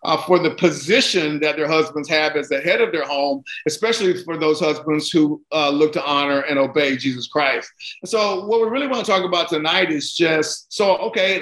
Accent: American